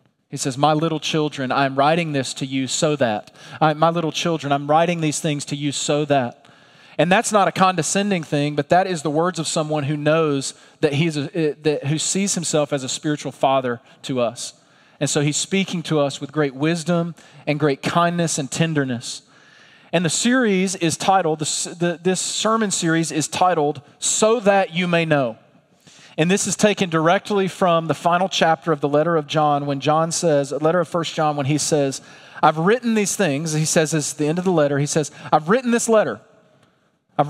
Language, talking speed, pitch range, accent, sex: English, 205 wpm, 145-185 Hz, American, male